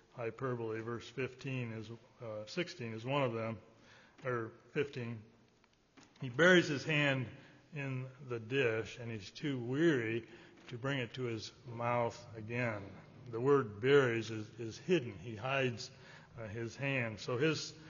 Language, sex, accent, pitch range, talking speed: English, male, American, 115-140 Hz, 145 wpm